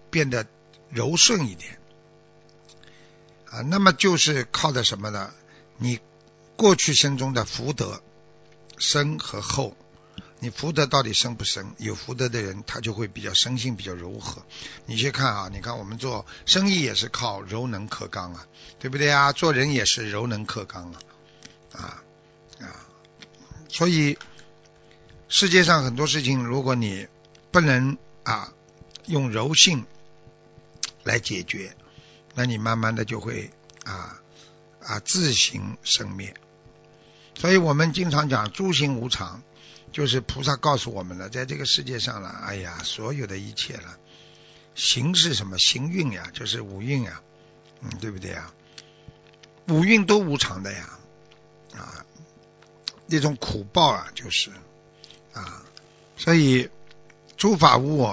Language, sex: Chinese, male